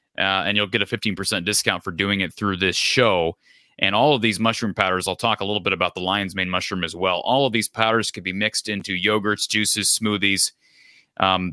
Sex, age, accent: male, 30-49, American